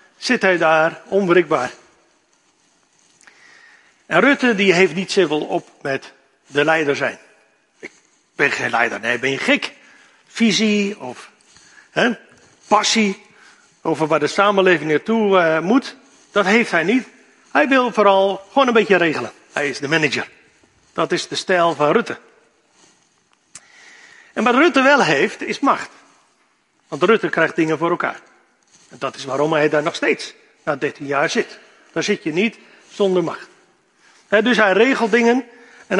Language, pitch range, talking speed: Dutch, 165-235 Hz, 150 wpm